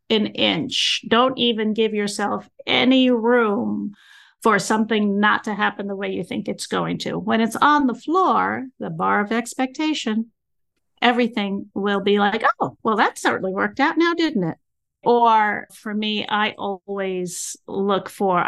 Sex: female